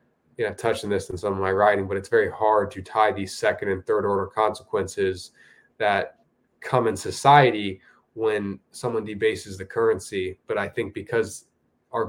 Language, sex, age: English, male, 20-39